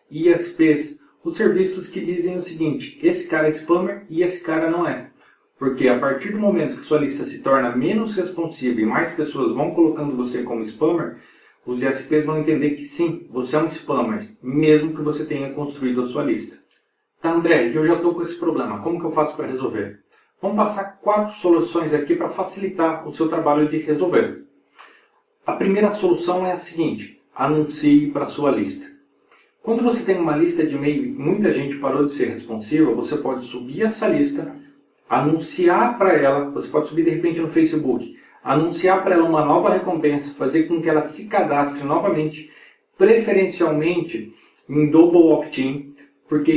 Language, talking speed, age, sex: Portuguese, 175 wpm, 40-59, male